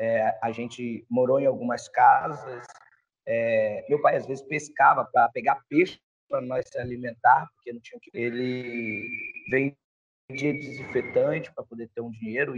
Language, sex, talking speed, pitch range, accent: Portuguese, male, 155 wpm, 130-195 Hz, Brazilian